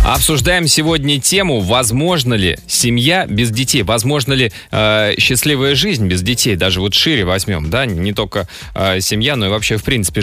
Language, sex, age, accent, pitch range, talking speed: Russian, male, 20-39, native, 100-140 Hz, 170 wpm